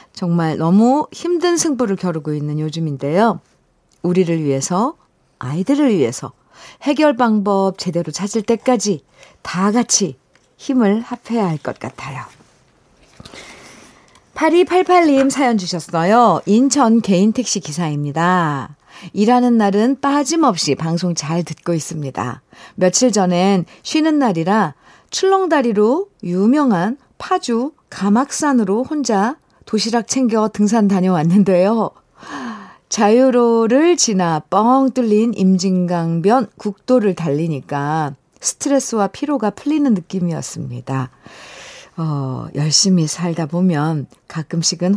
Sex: female